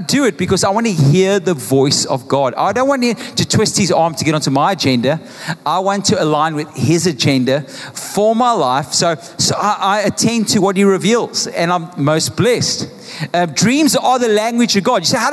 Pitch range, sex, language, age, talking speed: 180-240 Hz, male, English, 30-49, 220 wpm